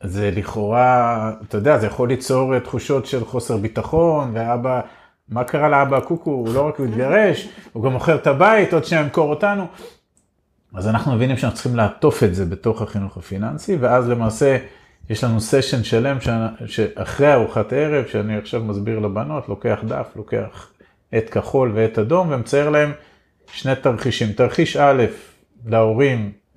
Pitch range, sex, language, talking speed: 105-135 Hz, male, Hebrew, 150 wpm